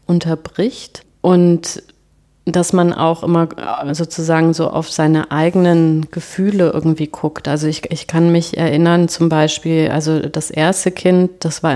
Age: 30-49